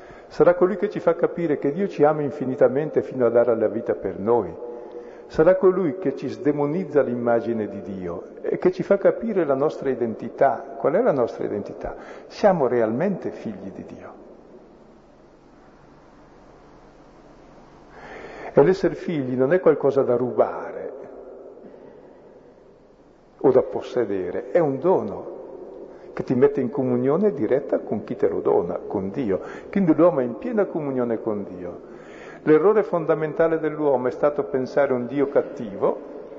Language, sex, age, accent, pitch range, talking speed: Italian, male, 50-69, native, 130-205 Hz, 145 wpm